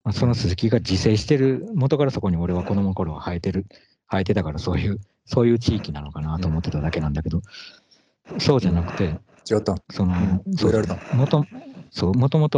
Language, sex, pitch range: Japanese, male, 85-120 Hz